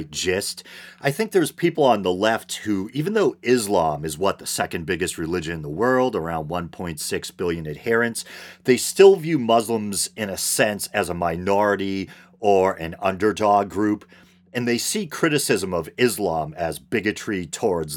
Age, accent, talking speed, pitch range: 40-59, American, 160 wpm, 90-115 Hz